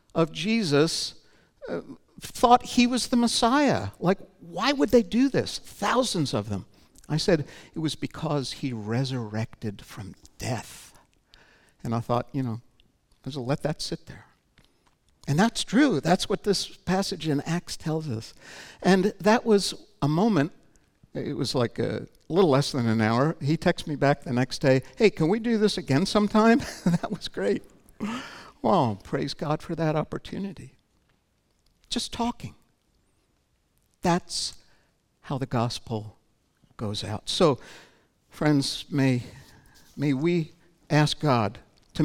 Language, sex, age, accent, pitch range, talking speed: English, male, 60-79, American, 135-195 Hz, 145 wpm